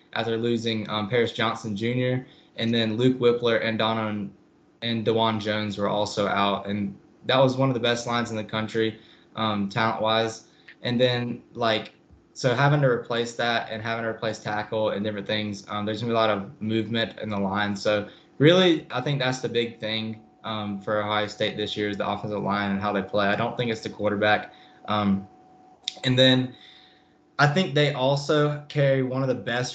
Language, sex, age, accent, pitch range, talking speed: English, male, 10-29, American, 110-125 Hz, 200 wpm